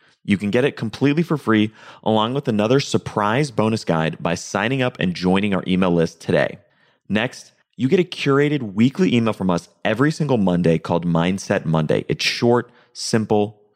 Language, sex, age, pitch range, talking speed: English, male, 30-49, 95-130 Hz, 175 wpm